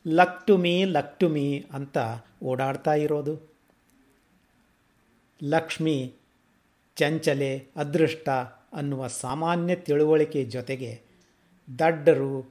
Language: Kannada